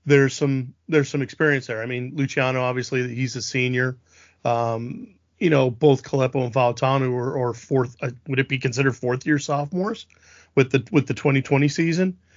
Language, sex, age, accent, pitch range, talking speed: English, male, 40-59, American, 120-145 Hz, 180 wpm